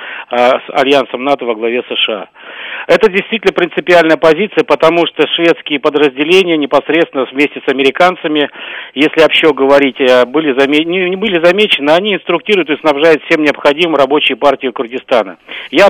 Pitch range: 140-170 Hz